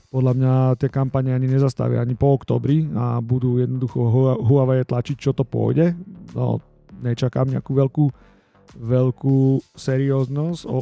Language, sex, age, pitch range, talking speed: Slovak, male, 40-59, 125-140 Hz, 130 wpm